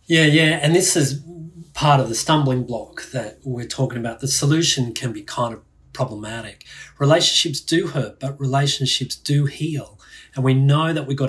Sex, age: male, 30-49